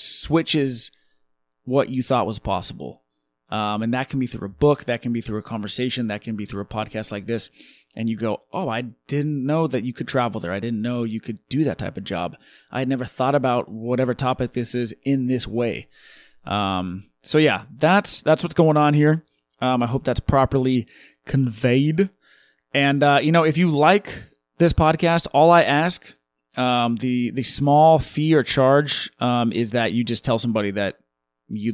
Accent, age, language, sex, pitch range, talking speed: American, 20-39, English, male, 105-140 Hz, 200 wpm